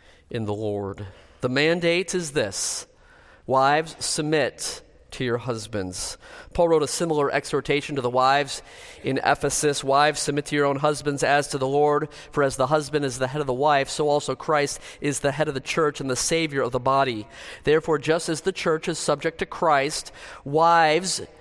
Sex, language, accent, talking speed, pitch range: male, English, American, 190 wpm, 135-175 Hz